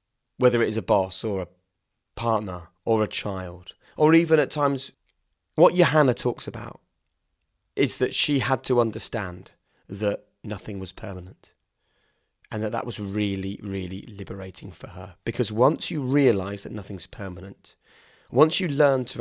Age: 30-49